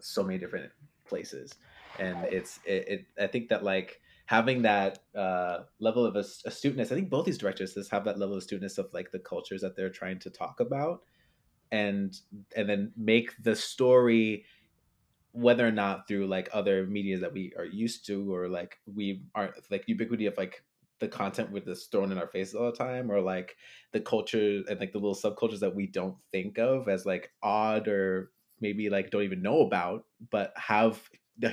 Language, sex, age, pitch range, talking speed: English, male, 20-39, 95-115 Hz, 195 wpm